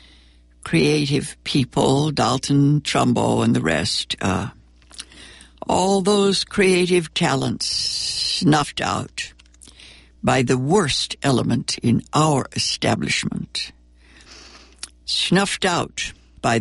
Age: 60-79